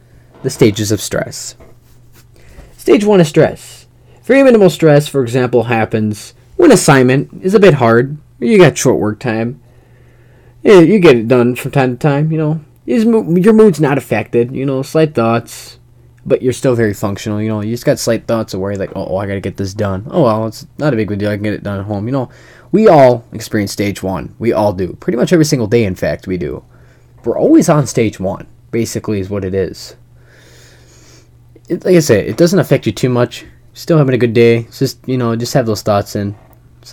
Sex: male